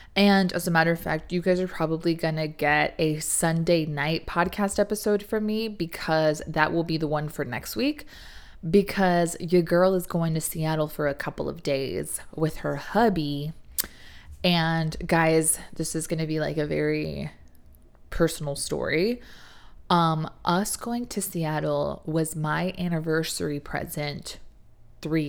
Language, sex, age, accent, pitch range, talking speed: English, female, 20-39, American, 155-190 Hz, 155 wpm